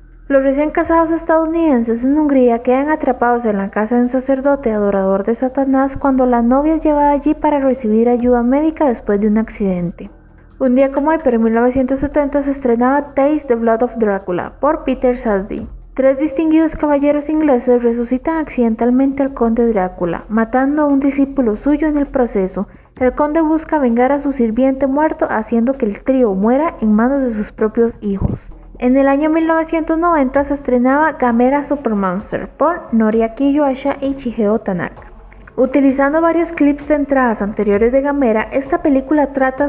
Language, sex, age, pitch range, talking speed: Spanish, female, 20-39, 230-290 Hz, 165 wpm